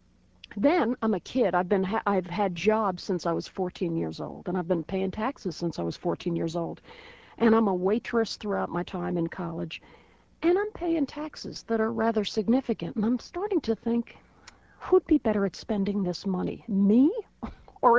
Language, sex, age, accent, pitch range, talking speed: English, female, 50-69, American, 180-225 Hz, 195 wpm